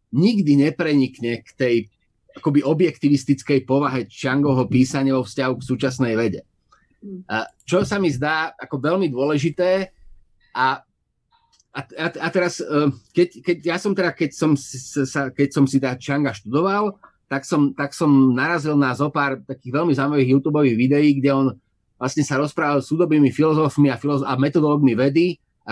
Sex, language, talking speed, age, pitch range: male, Slovak, 155 wpm, 30-49, 135-170 Hz